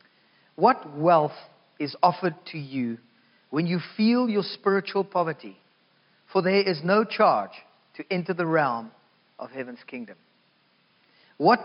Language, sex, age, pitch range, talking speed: English, male, 40-59, 140-190 Hz, 130 wpm